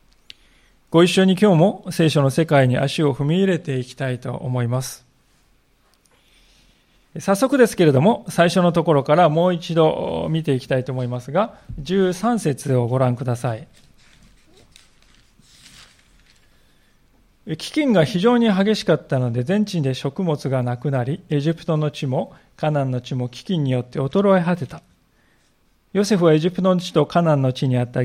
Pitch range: 135-185 Hz